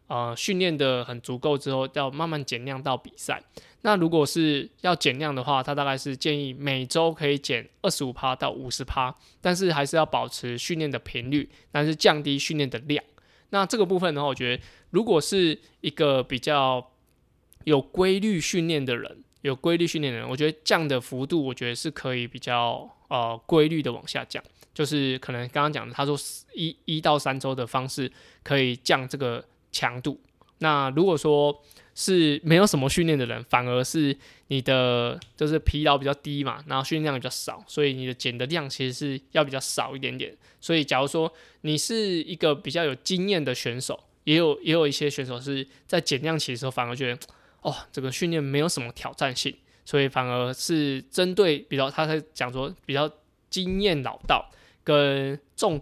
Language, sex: Chinese, male